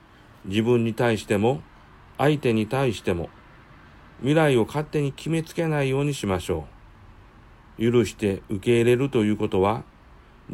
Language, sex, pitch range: Japanese, male, 95-130 Hz